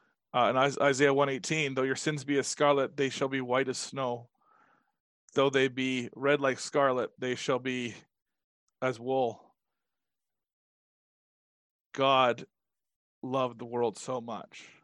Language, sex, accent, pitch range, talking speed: English, male, American, 115-150 Hz, 140 wpm